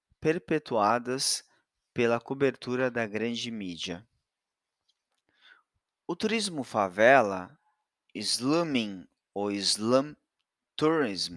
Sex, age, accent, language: male, 20-39, Brazilian, Portuguese